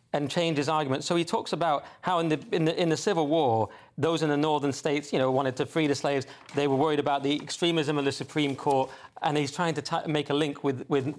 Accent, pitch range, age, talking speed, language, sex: British, 135-165 Hz, 30-49, 265 wpm, English, male